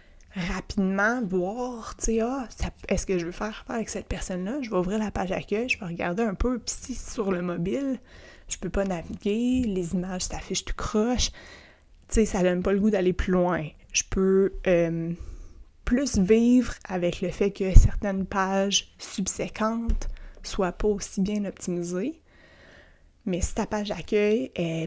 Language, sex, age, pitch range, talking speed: French, female, 20-39, 175-220 Hz, 175 wpm